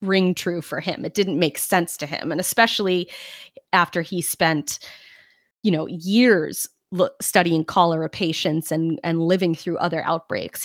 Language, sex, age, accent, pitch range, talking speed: English, female, 30-49, American, 170-220 Hz, 160 wpm